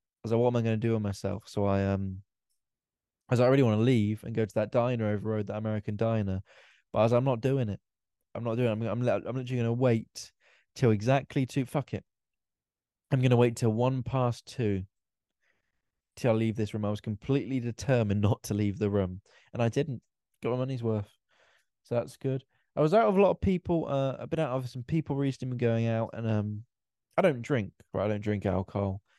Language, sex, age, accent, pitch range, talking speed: English, male, 20-39, British, 105-130 Hz, 240 wpm